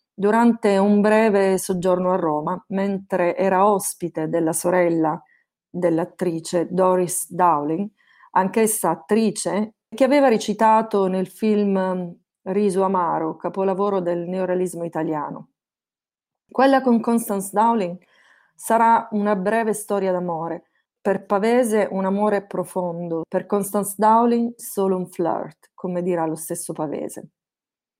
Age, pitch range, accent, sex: 30-49, 180-215 Hz, native, female